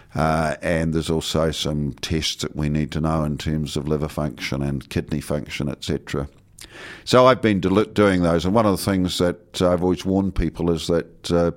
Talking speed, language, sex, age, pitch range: 200 wpm, English, male, 50-69, 85-100 Hz